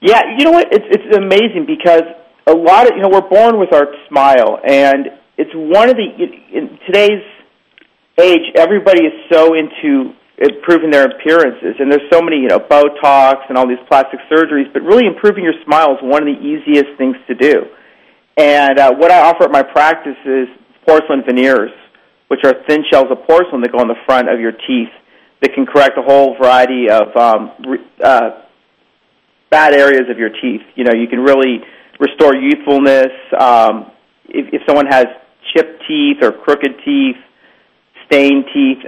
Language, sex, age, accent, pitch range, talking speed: English, male, 40-59, American, 130-175 Hz, 180 wpm